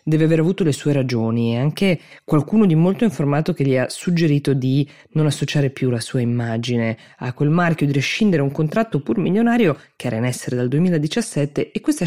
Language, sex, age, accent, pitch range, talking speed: Italian, female, 20-39, native, 125-155 Hz, 200 wpm